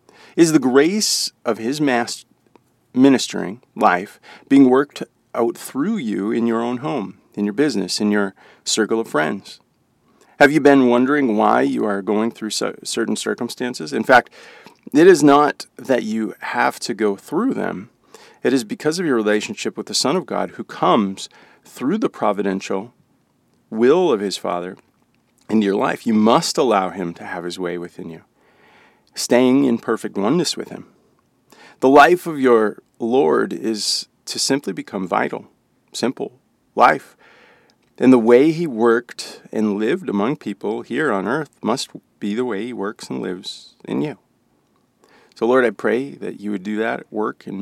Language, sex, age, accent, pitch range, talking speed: English, male, 40-59, American, 100-125 Hz, 165 wpm